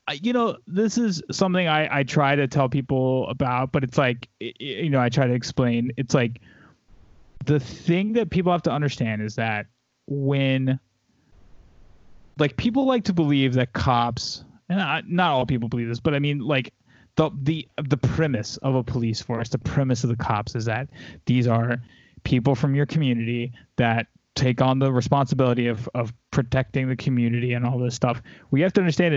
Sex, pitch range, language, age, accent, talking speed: male, 120-145 Hz, English, 20-39, American, 185 wpm